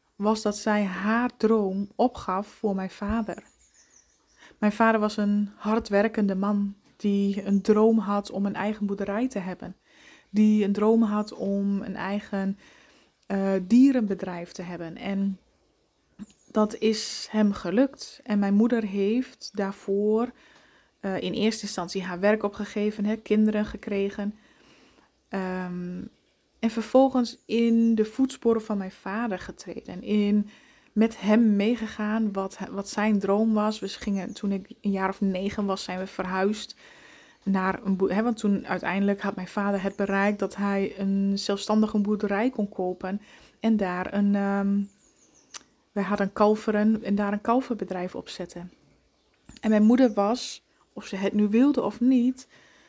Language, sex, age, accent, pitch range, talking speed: Dutch, female, 20-39, Dutch, 195-220 Hz, 145 wpm